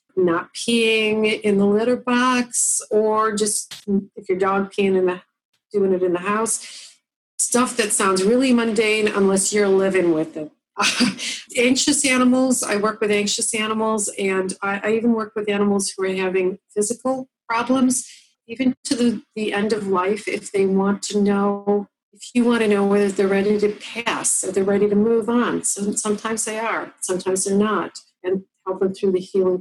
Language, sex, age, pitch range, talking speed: English, female, 40-59, 195-230 Hz, 180 wpm